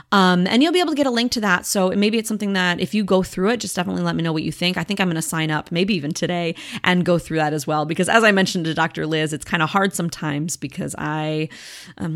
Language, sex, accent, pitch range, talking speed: English, female, American, 165-210 Hz, 295 wpm